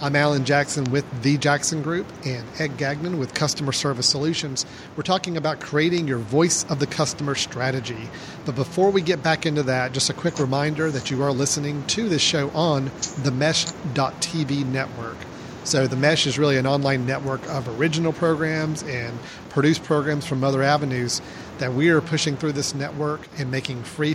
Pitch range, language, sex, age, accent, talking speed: 130-155 Hz, English, male, 40-59, American, 180 wpm